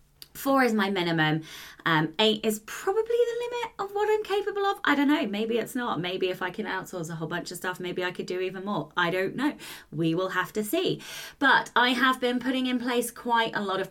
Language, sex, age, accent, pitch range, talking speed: English, female, 20-39, British, 165-225 Hz, 240 wpm